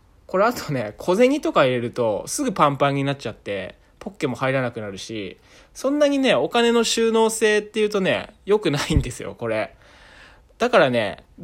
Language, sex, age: Japanese, male, 20-39